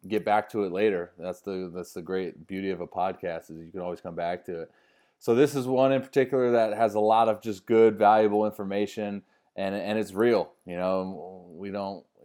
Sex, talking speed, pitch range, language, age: male, 220 wpm, 95-120 Hz, English, 20-39